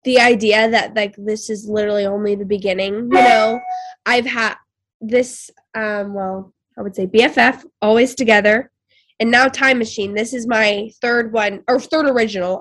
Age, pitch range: 10-29, 200-250 Hz